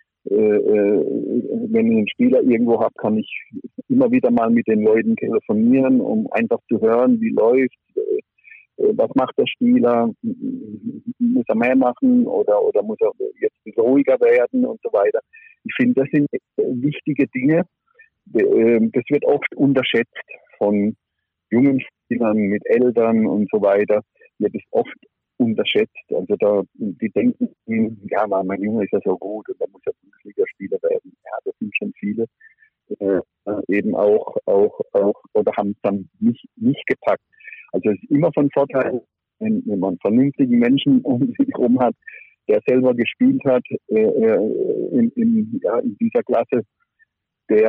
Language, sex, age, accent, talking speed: German, male, 50-69, German, 155 wpm